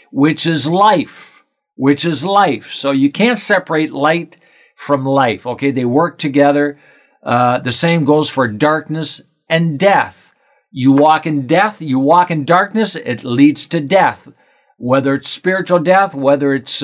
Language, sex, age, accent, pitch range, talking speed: English, male, 50-69, American, 125-165 Hz, 155 wpm